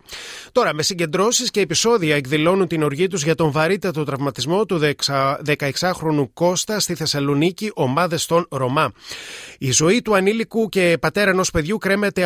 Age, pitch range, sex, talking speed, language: 30-49, 150-200 Hz, male, 145 wpm, Greek